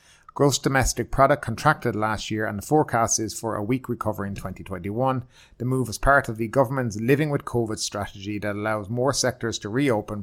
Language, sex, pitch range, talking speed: English, male, 105-125 Hz, 195 wpm